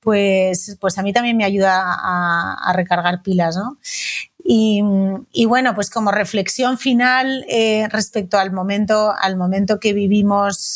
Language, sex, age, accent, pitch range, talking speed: Spanish, female, 30-49, Spanish, 195-225 Hz, 150 wpm